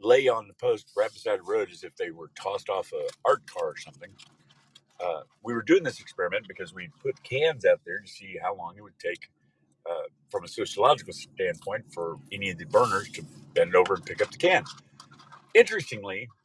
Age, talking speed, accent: 50-69, 210 wpm, American